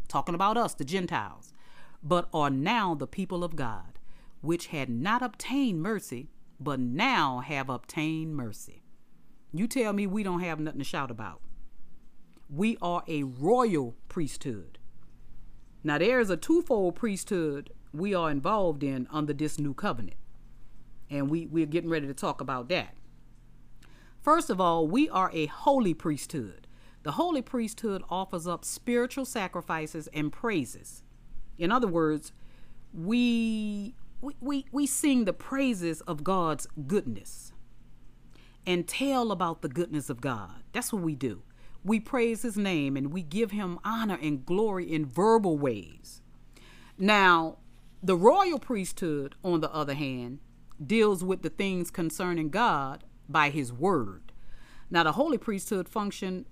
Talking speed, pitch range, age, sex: 140 wpm, 145-210 Hz, 40-59, female